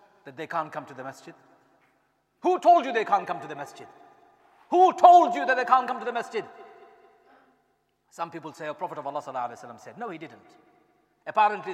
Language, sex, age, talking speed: English, male, 40-59, 195 wpm